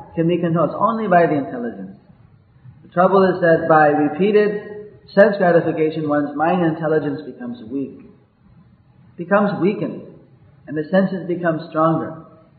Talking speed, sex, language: 140 wpm, male, English